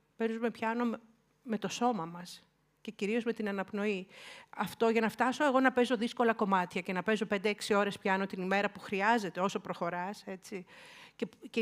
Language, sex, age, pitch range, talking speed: Greek, female, 50-69, 195-240 Hz, 180 wpm